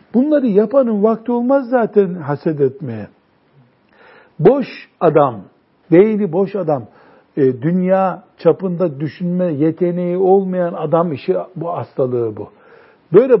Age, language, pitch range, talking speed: 60-79, Turkish, 150-195 Hz, 105 wpm